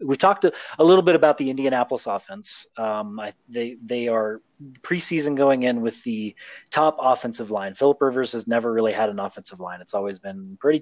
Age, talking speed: 30-49, 195 wpm